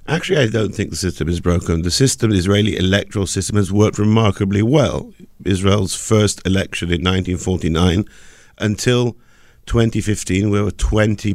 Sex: male